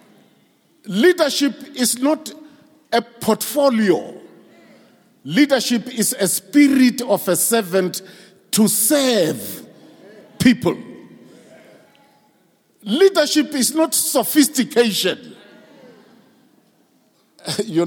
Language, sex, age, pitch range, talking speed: English, male, 50-69, 180-255 Hz, 65 wpm